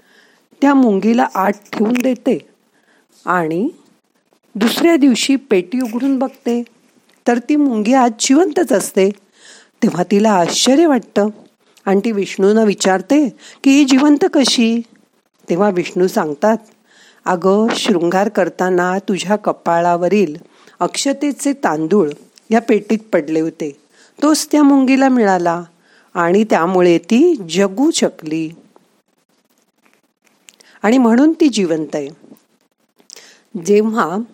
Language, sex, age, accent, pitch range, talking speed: Marathi, female, 50-69, native, 180-250 Hz, 95 wpm